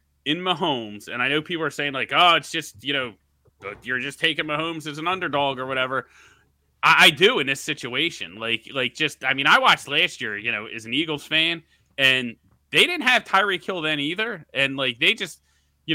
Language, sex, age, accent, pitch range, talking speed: English, male, 30-49, American, 130-175 Hz, 215 wpm